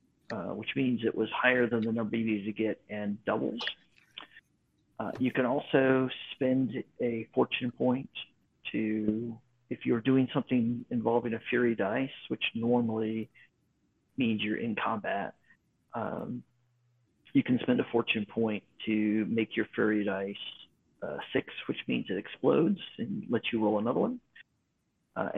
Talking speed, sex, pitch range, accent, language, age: 150 wpm, male, 110-140 Hz, American, English, 40-59